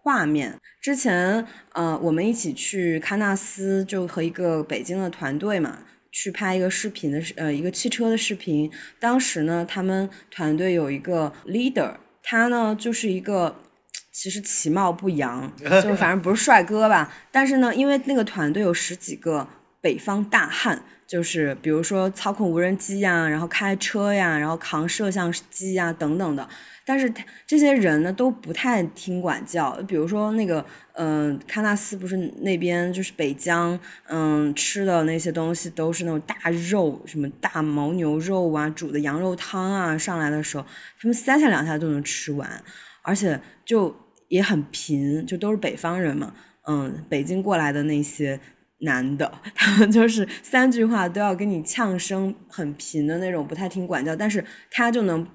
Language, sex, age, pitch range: Chinese, female, 20-39, 160-205 Hz